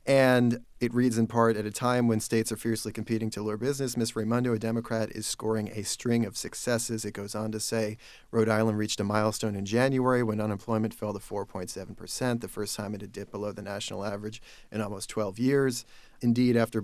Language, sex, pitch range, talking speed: English, male, 105-120 Hz, 210 wpm